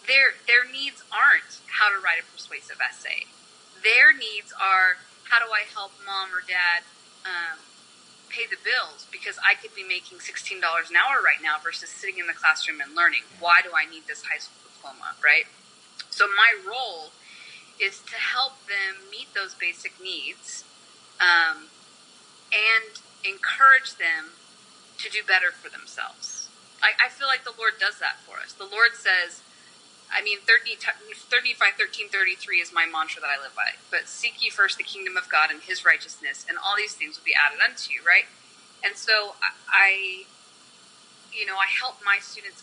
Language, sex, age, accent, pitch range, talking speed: English, female, 30-49, American, 175-245 Hz, 175 wpm